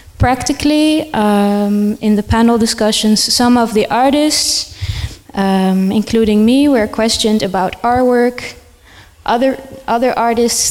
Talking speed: 120 wpm